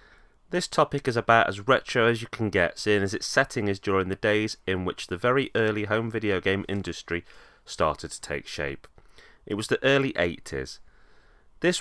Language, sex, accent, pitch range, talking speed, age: English, male, British, 100-130 Hz, 190 wpm, 30-49